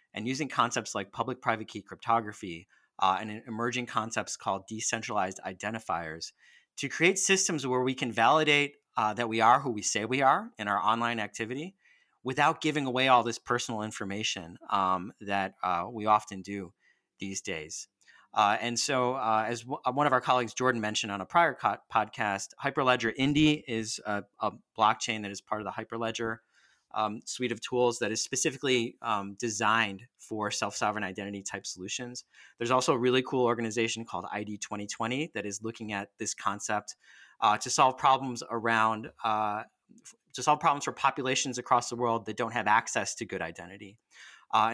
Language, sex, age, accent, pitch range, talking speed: English, male, 30-49, American, 105-125 Hz, 170 wpm